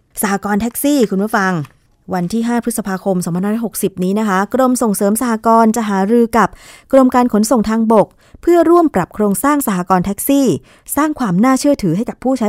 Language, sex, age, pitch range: Thai, female, 20-39, 185-235 Hz